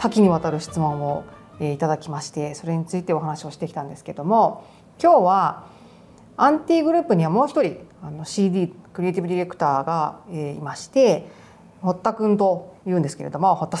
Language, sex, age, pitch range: Japanese, female, 40-59, 155-220 Hz